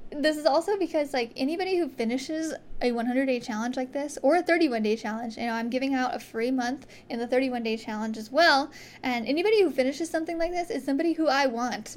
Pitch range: 230-280 Hz